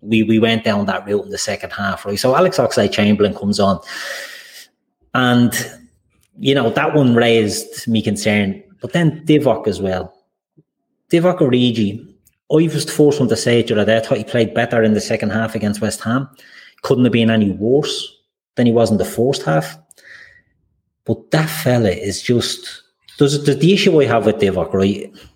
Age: 30-49